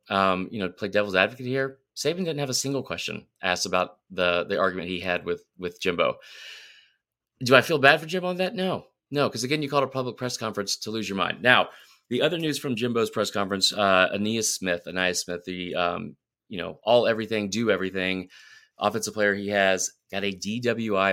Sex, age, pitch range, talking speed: male, 30-49, 95-125 Hz, 205 wpm